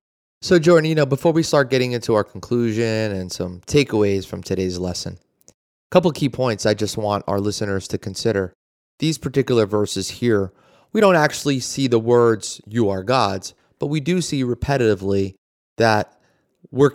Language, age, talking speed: English, 30-49, 175 wpm